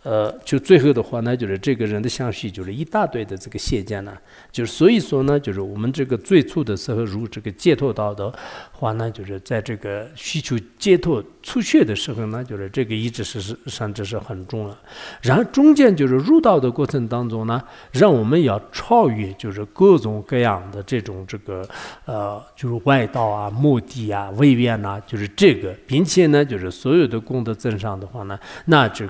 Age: 50-69